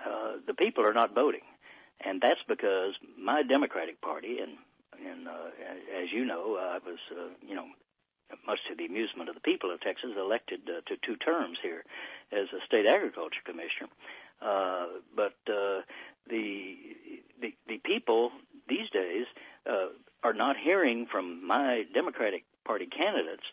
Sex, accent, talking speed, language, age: male, American, 155 wpm, English, 60-79